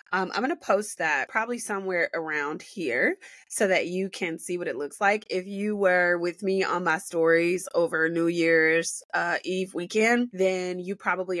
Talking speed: 190 wpm